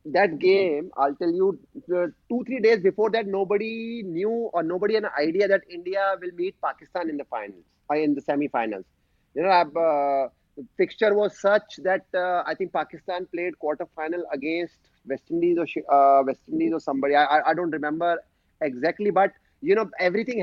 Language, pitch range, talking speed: English, 165-205 Hz, 180 wpm